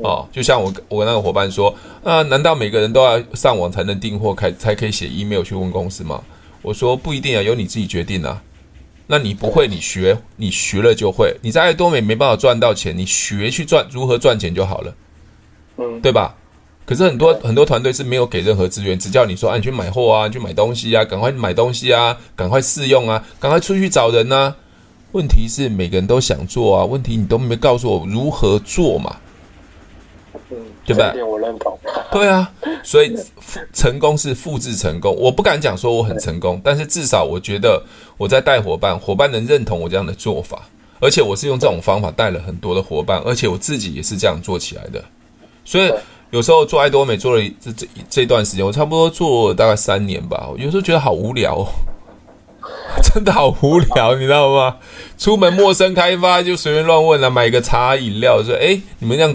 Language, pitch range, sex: Chinese, 100-145 Hz, male